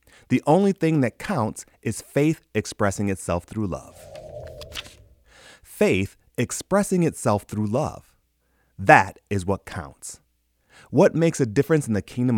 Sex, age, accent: male, 30-49, American